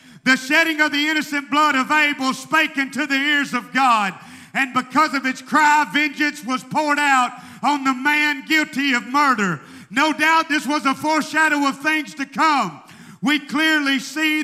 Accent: American